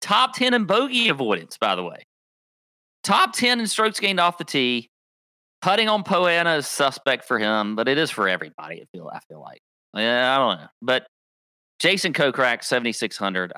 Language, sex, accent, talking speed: English, male, American, 170 wpm